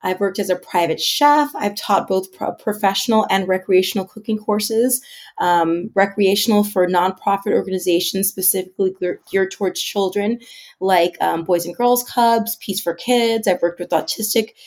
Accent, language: American, English